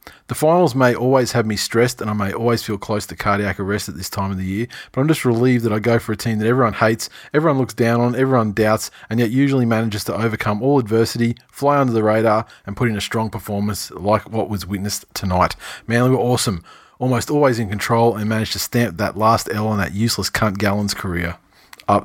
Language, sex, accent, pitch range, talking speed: English, male, Australian, 105-130 Hz, 230 wpm